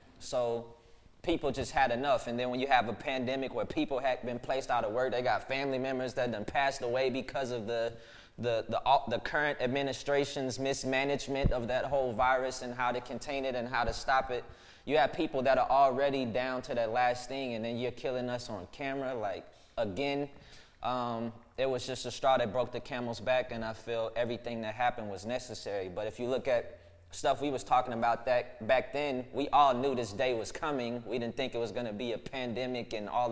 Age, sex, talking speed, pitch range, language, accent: 20-39, male, 220 wpm, 115-130 Hz, English, American